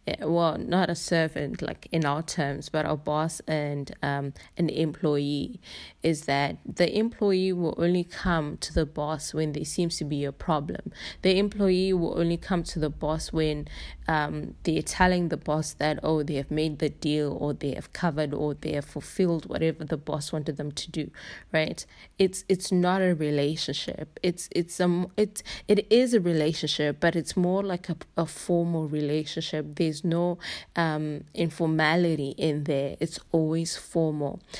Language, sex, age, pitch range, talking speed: English, female, 20-39, 150-175 Hz, 175 wpm